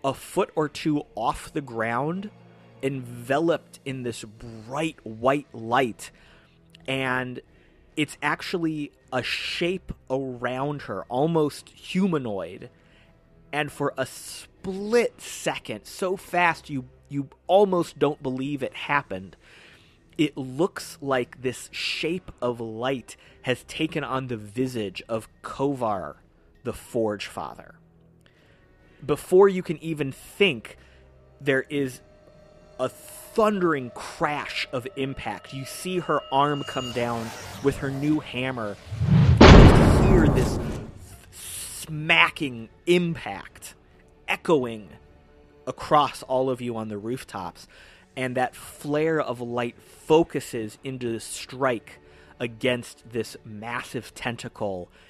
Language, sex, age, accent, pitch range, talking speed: English, male, 30-49, American, 110-150 Hz, 110 wpm